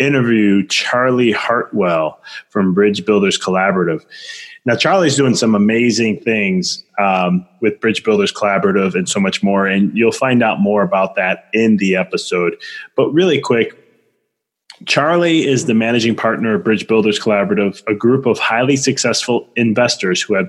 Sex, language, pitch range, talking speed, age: male, English, 110-140 Hz, 150 wpm, 20-39